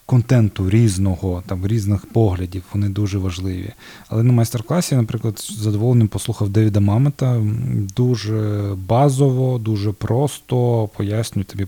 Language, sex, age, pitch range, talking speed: Ukrainian, male, 20-39, 105-125 Hz, 115 wpm